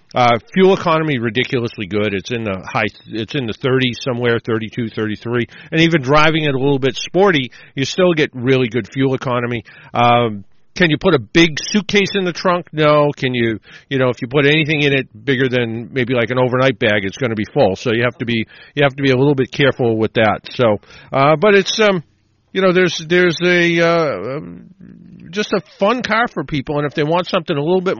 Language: English